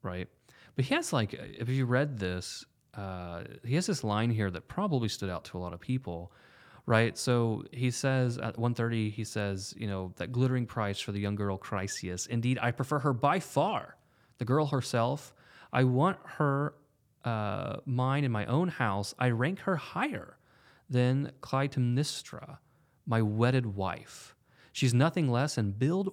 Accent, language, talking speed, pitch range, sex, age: American, English, 175 wpm, 105-140 Hz, male, 30-49